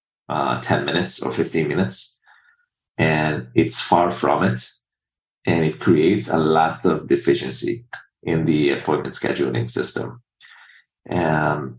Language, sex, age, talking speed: English, male, 30-49, 115 wpm